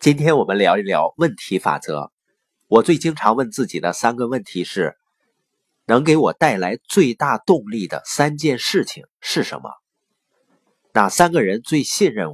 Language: Chinese